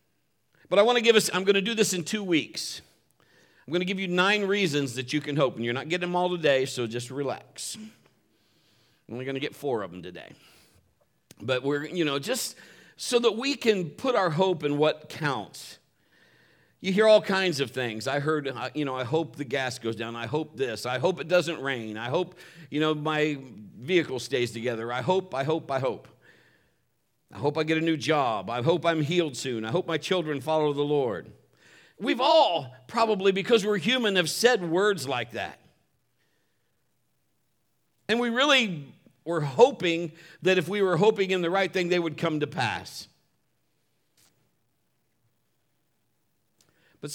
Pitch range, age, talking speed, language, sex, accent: 135-185 Hz, 50-69, 185 wpm, English, male, American